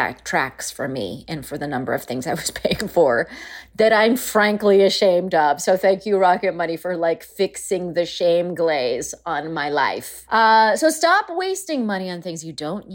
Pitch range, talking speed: 175-255 Hz, 190 wpm